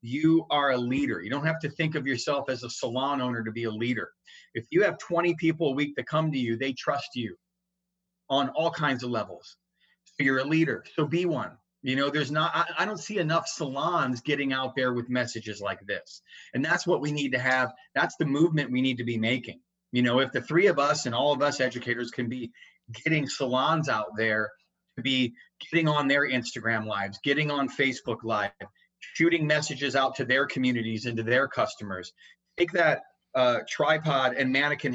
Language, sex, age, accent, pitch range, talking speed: English, male, 30-49, American, 125-155 Hz, 210 wpm